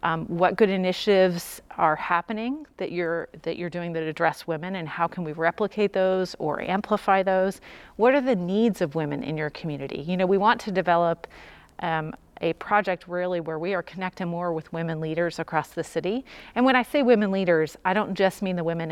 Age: 30-49